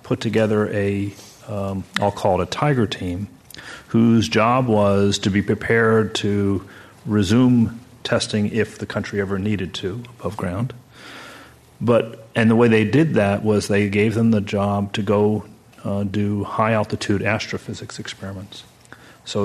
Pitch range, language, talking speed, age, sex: 100-110 Hz, English, 150 wpm, 40-59, male